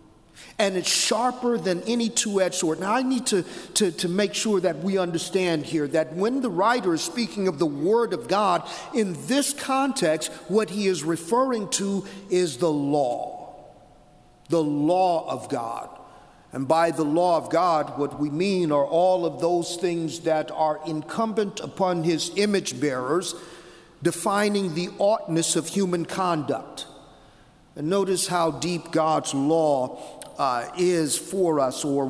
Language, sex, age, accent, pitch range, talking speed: English, male, 50-69, American, 160-195 Hz, 155 wpm